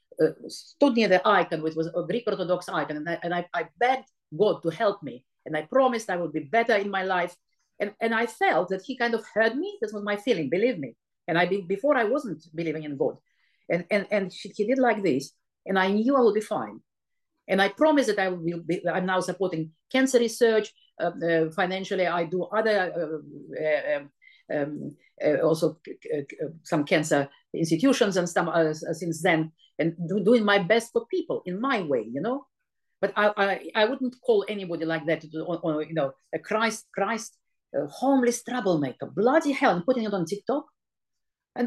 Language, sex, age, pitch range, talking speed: English, female, 50-69, 170-240 Hz, 205 wpm